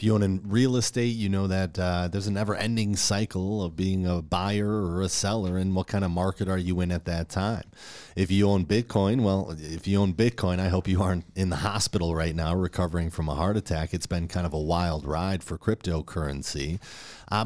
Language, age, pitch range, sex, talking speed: English, 40-59, 90-110 Hz, male, 225 wpm